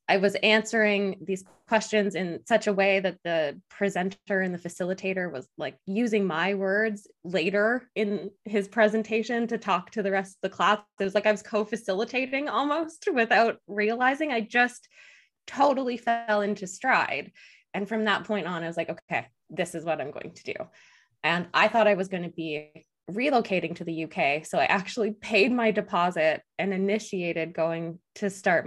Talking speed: 180 wpm